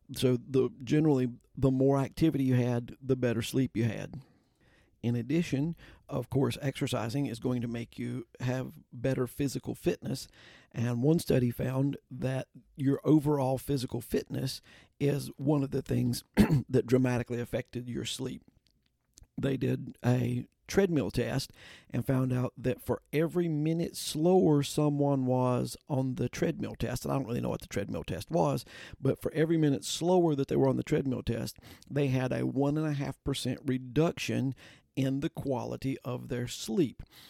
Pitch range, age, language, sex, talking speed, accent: 125-145 Hz, 50-69, English, male, 165 wpm, American